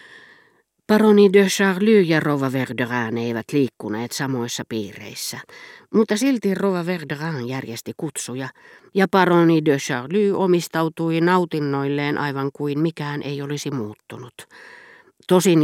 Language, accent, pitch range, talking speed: Finnish, native, 130-185 Hz, 110 wpm